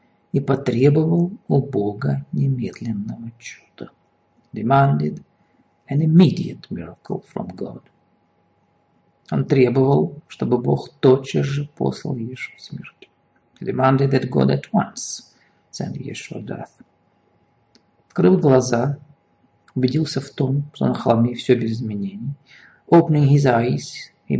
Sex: male